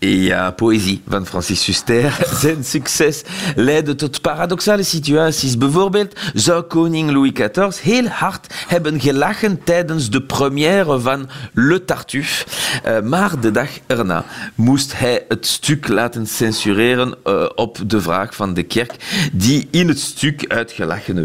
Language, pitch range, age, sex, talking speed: Dutch, 115-155 Hz, 40-59, male, 135 wpm